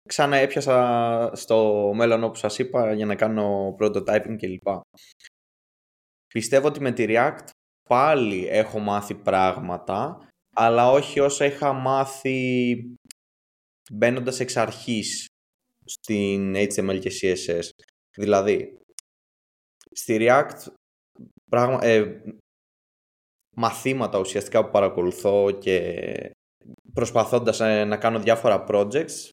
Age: 20-39